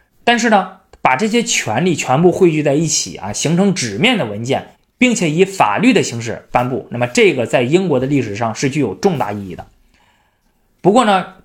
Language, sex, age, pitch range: Chinese, male, 20-39, 135-215 Hz